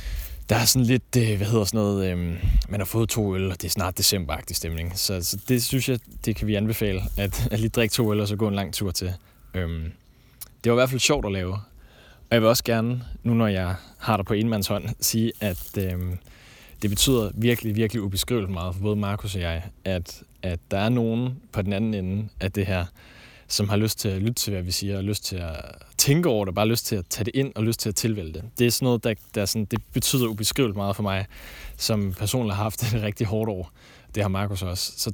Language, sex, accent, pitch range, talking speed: Danish, male, native, 95-115 Hz, 250 wpm